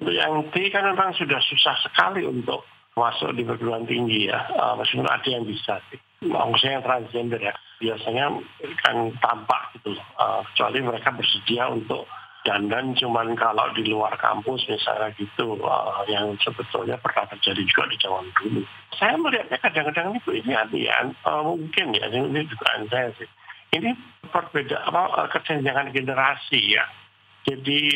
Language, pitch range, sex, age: Indonesian, 115-140 Hz, male, 50-69